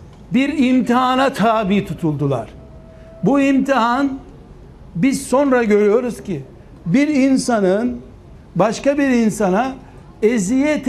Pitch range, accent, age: 215-270 Hz, native, 60-79